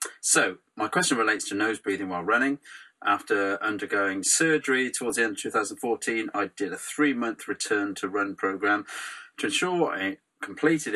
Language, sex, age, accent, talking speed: English, male, 30-49, British, 165 wpm